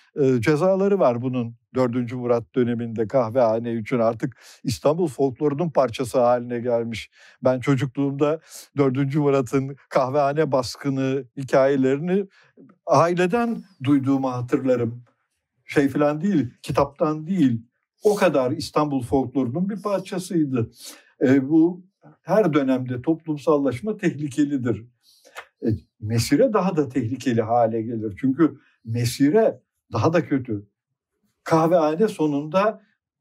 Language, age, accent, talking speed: Turkish, 60-79, native, 100 wpm